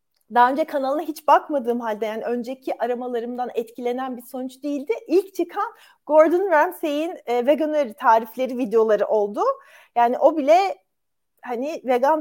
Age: 40-59